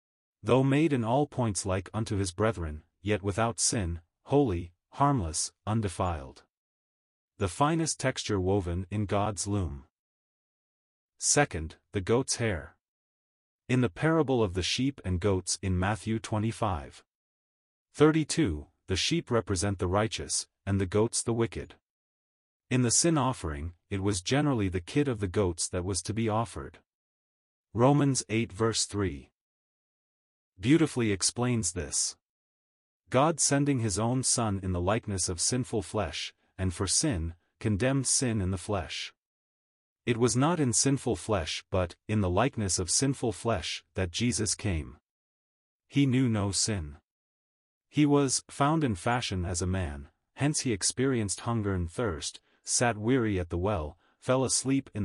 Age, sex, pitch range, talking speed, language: 30-49, male, 90-120 Hz, 145 wpm, English